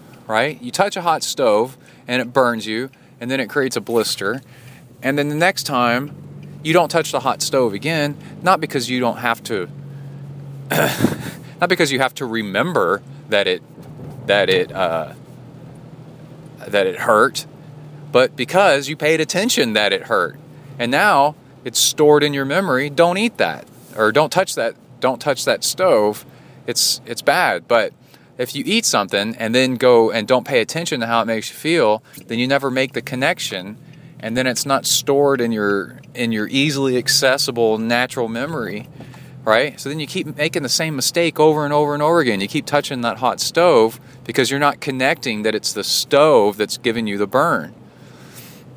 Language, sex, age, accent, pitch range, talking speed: English, male, 30-49, American, 120-150 Hz, 180 wpm